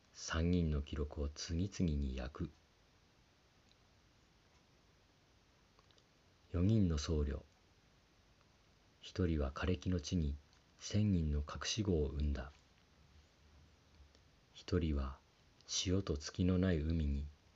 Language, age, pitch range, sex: Japanese, 40-59, 75-90 Hz, male